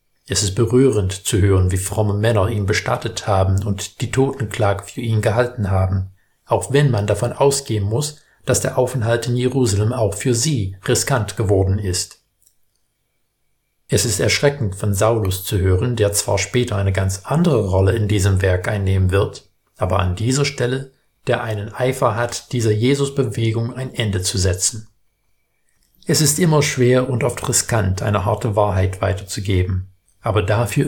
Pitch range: 100-125 Hz